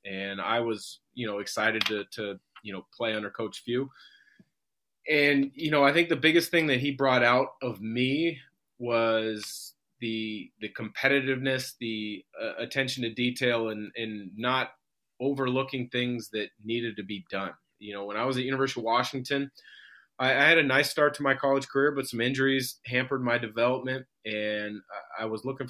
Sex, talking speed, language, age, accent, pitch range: male, 180 wpm, English, 30-49, American, 110-135 Hz